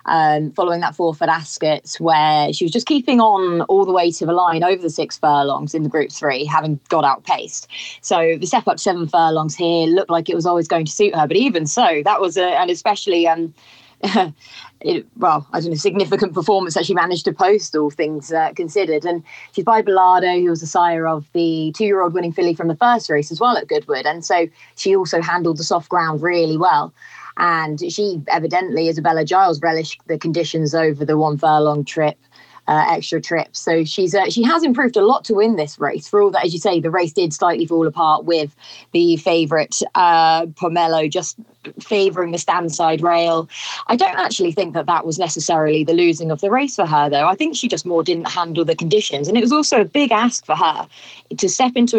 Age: 30-49